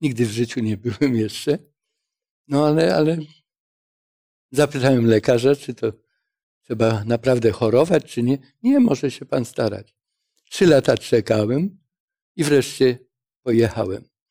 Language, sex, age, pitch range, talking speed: Polish, male, 60-79, 125-175 Hz, 120 wpm